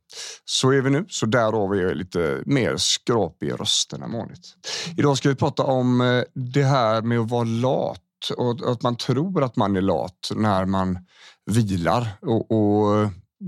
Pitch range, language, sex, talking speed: 100-120 Hz, Swedish, male, 165 wpm